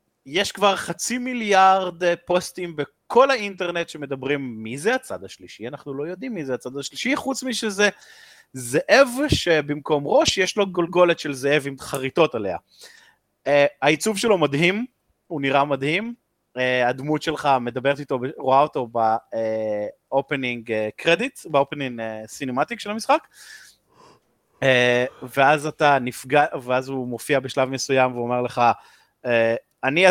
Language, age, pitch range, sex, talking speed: Hebrew, 20-39, 125-190 Hz, male, 130 wpm